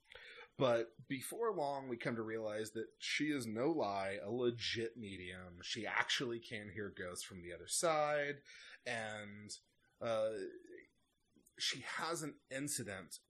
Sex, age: male, 30-49